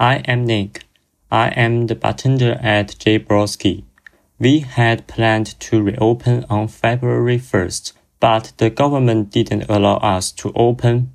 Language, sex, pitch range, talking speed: English, male, 95-115 Hz, 140 wpm